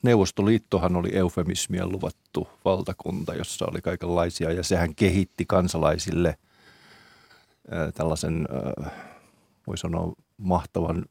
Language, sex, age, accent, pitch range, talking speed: Finnish, male, 30-49, native, 85-95 Hz, 95 wpm